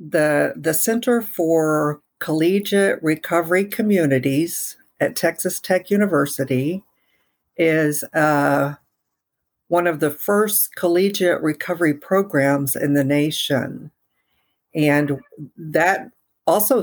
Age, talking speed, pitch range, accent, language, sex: 60-79, 95 wpm, 145-170 Hz, American, English, female